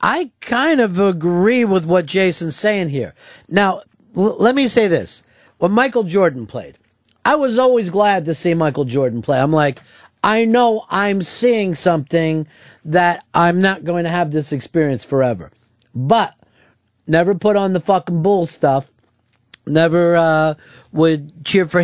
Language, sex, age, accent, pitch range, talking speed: English, male, 50-69, American, 145-185 Hz, 155 wpm